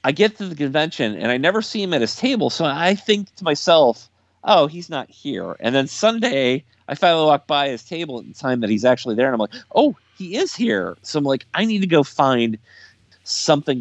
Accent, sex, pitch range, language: American, male, 100-140 Hz, English